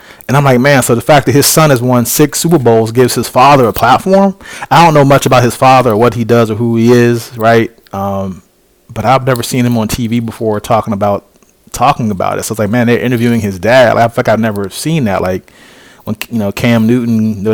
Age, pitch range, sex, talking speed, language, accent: 30-49, 110-135 Hz, male, 250 wpm, English, American